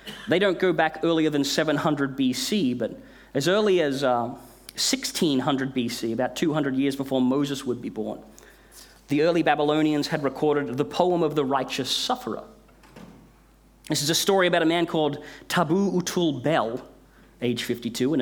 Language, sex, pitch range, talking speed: English, male, 135-175 Hz, 160 wpm